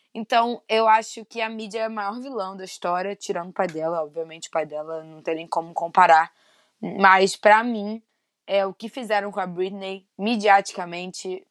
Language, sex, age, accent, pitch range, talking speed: Portuguese, female, 20-39, Brazilian, 180-215 Hz, 180 wpm